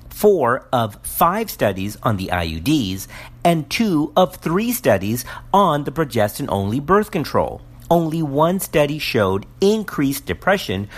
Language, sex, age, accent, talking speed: English, male, 50-69, American, 125 wpm